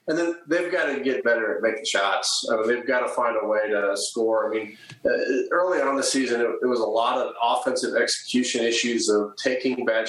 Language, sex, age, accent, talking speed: English, male, 30-49, American, 230 wpm